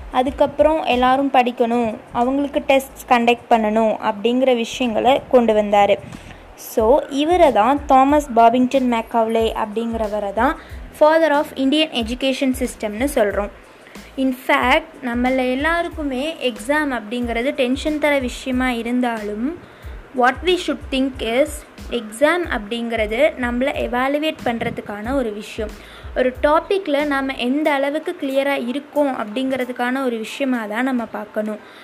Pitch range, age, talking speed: 240-295 Hz, 20-39, 110 wpm